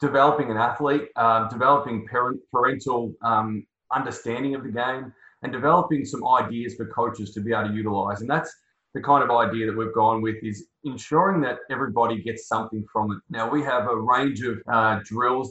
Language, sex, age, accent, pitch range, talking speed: English, male, 20-39, Australian, 110-130 Hz, 190 wpm